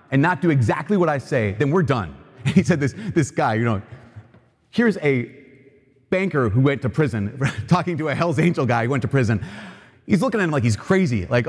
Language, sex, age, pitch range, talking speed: English, male, 30-49, 120-155 Hz, 225 wpm